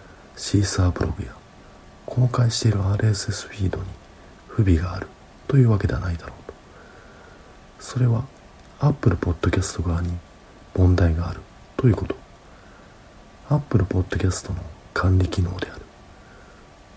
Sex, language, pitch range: male, Japanese, 90-115 Hz